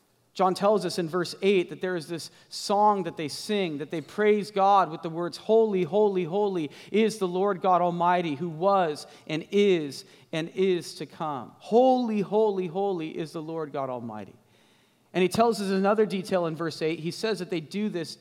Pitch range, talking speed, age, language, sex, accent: 155-190 Hz, 200 wpm, 40-59, English, male, American